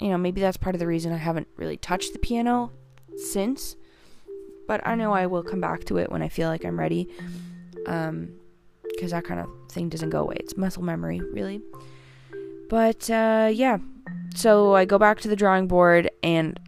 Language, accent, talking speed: English, American, 200 wpm